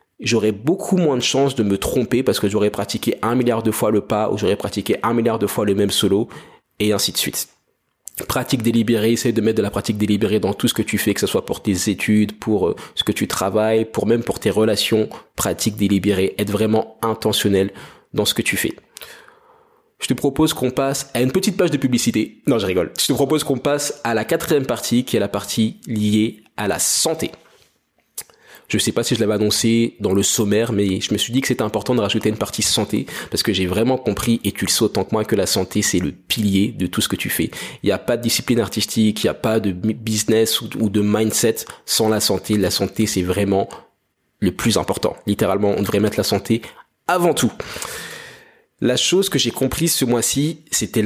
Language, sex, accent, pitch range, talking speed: French, male, French, 105-120 Hz, 230 wpm